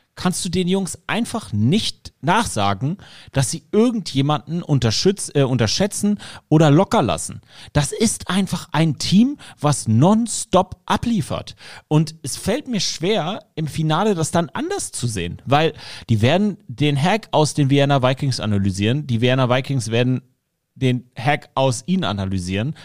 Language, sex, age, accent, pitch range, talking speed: German, male, 30-49, German, 120-180 Hz, 140 wpm